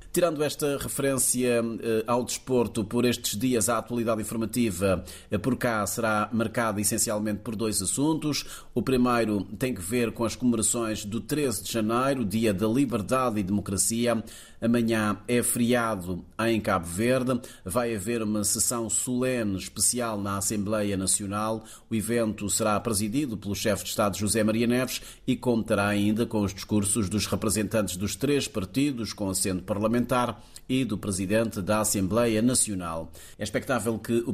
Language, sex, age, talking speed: Portuguese, male, 30-49, 150 wpm